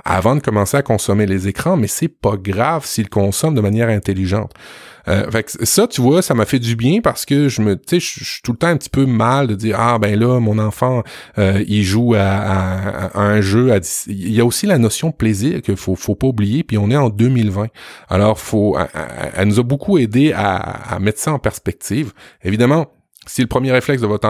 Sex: male